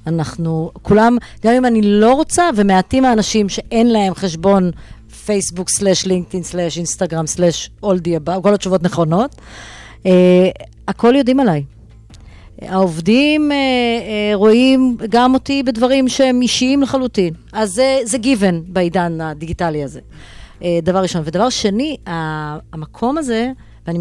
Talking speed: 130 wpm